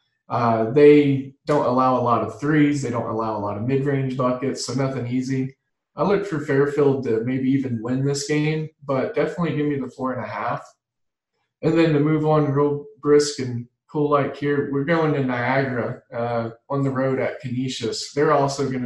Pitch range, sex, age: 120-145 Hz, male, 20-39